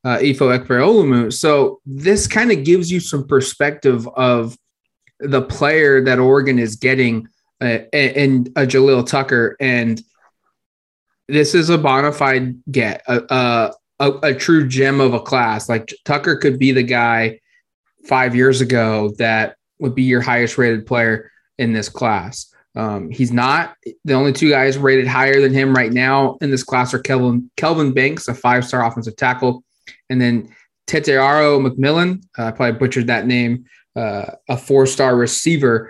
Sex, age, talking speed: male, 20-39, 160 wpm